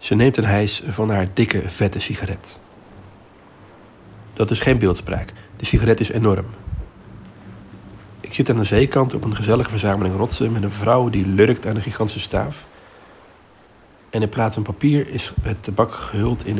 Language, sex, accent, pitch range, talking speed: Dutch, male, Dutch, 100-115 Hz, 165 wpm